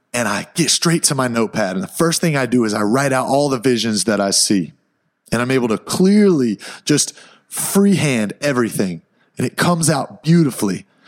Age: 30-49